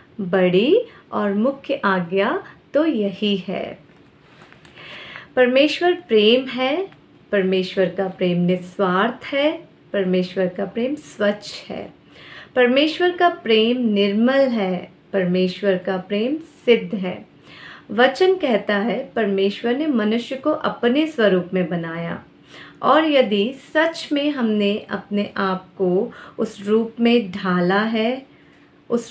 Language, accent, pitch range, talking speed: Hindi, native, 195-255 Hz, 115 wpm